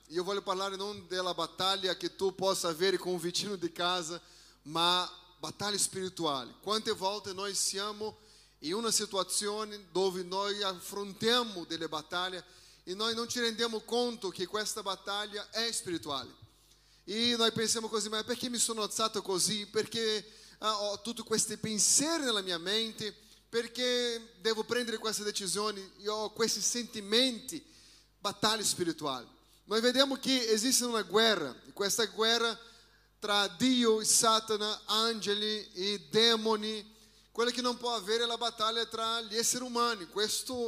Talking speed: 145 wpm